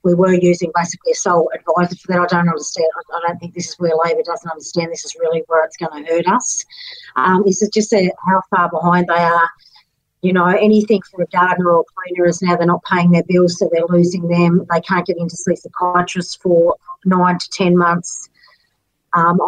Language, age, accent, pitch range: English, 40-59, Australian, 175-205 Hz